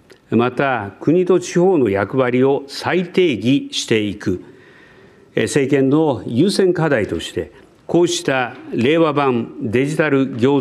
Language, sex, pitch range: Japanese, male, 120-150 Hz